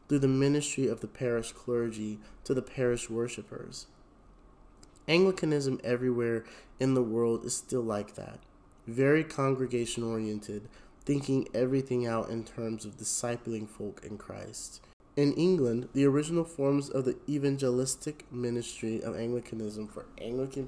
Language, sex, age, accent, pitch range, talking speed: English, male, 30-49, American, 110-135 Hz, 130 wpm